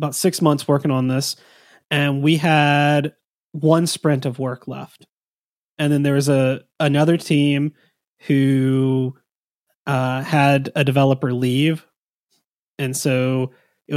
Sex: male